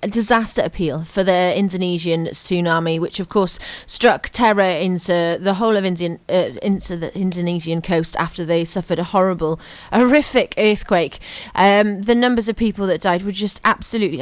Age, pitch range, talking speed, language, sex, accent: 30-49, 175-220 Hz, 160 wpm, English, female, British